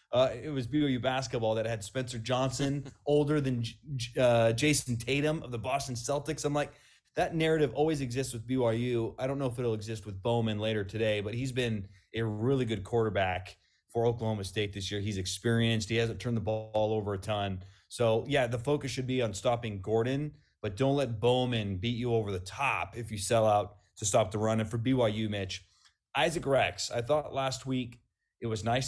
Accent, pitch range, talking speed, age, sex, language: American, 110-130 Hz, 200 wpm, 30-49, male, English